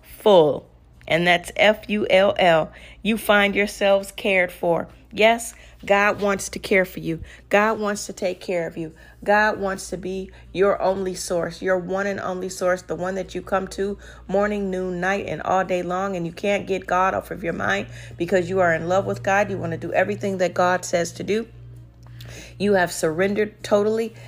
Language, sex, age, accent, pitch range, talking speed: English, female, 40-59, American, 170-200 Hz, 195 wpm